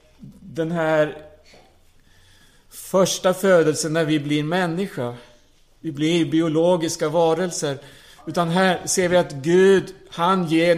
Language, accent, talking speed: Swedish, Norwegian, 110 wpm